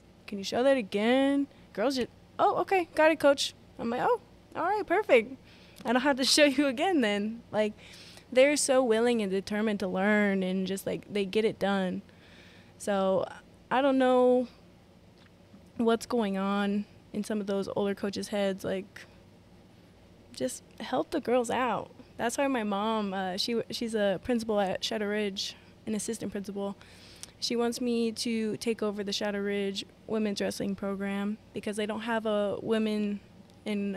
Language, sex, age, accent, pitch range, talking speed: English, female, 20-39, American, 200-240 Hz, 170 wpm